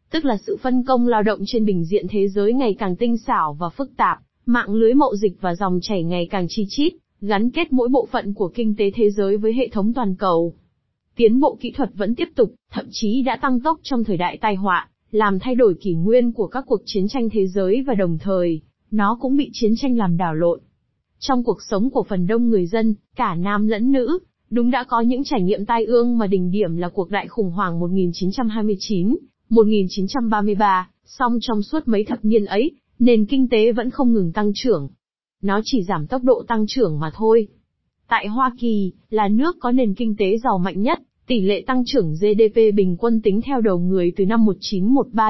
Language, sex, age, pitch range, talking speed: Vietnamese, female, 20-39, 195-245 Hz, 220 wpm